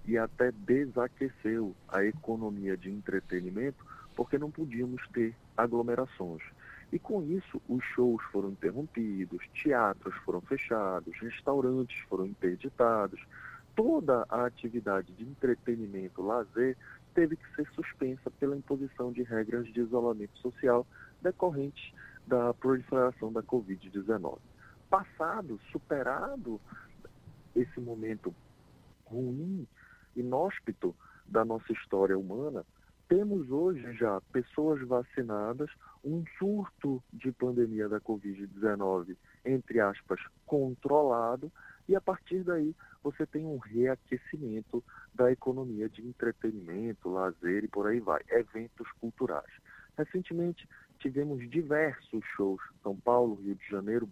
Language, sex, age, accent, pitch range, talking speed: Portuguese, male, 40-59, Brazilian, 110-135 Hz, 110 wpm